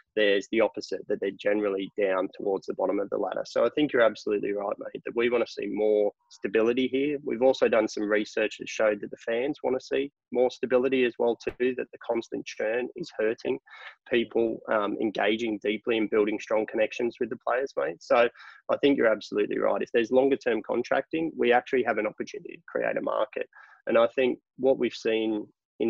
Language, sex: English, male